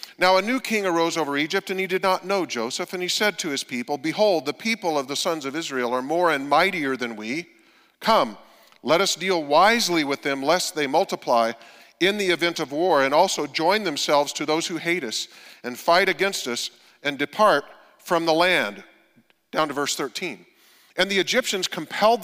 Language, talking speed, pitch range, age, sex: English, 200 wpm, 145-185 Hz, 40-59, male